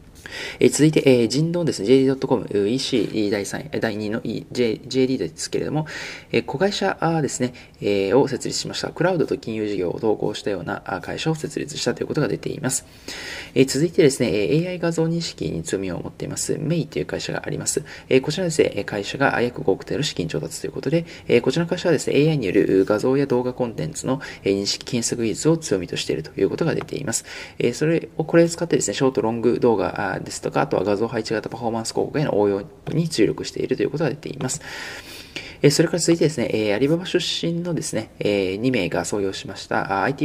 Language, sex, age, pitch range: Japanese, male, 20-39, 110-160 Hz